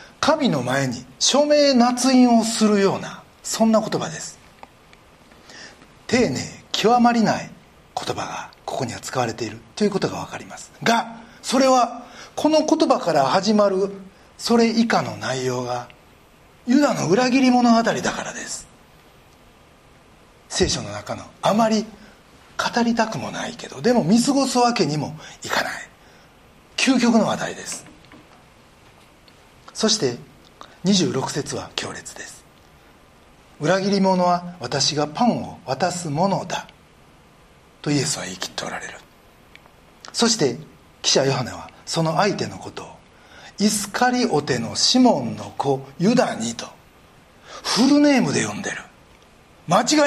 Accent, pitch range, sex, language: native, 160-245 Hz, male, Japanese